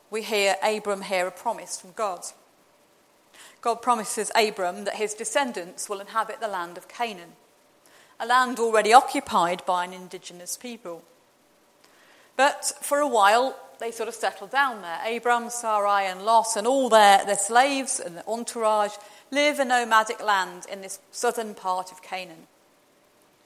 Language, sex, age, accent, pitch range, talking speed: English, female, 40-59, British, 195-250 Hz, 155 wpm